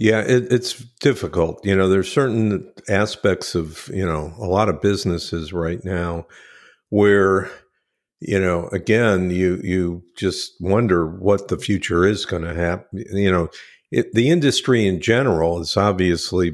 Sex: male